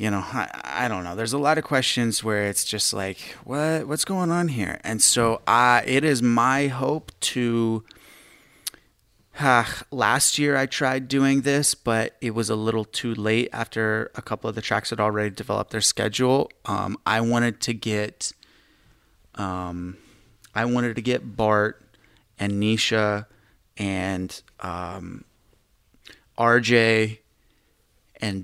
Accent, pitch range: American, 105-125 Hz